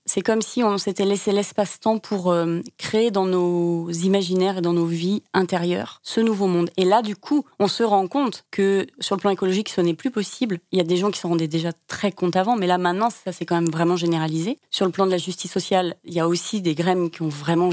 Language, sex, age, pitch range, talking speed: French, female, 30-49, 175-210 Hz, 255 wpm